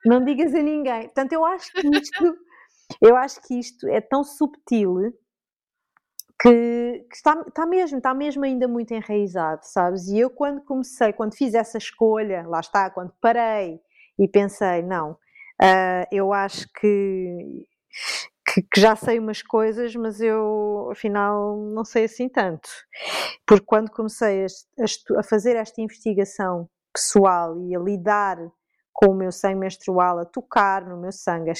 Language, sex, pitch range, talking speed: Portuguese, female, 185-240 Hz, 145 wpm